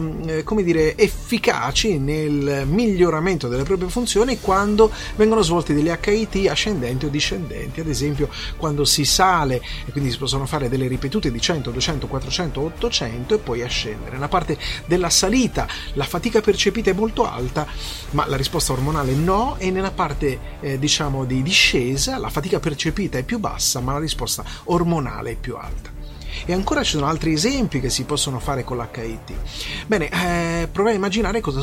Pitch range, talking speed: 135-185 Hz, 170 wpm